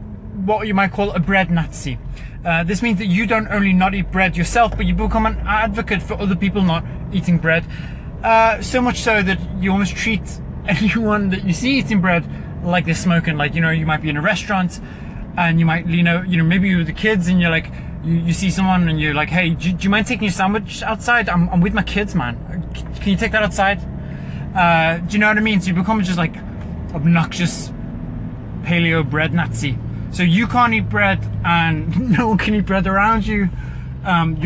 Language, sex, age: English, male, 20-39